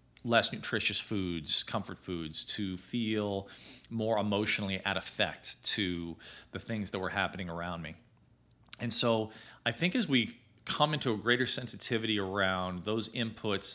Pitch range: 90-110 Hz